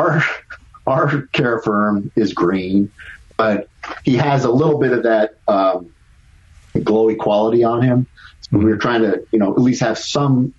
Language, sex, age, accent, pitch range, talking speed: English, male, 40-59, American, 105-135 Hz, 170 wpm